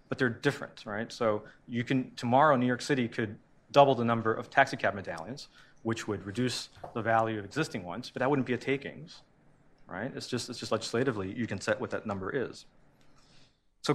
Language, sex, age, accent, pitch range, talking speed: English, male, 40-59, American, 110-130 Hz, 200 wpm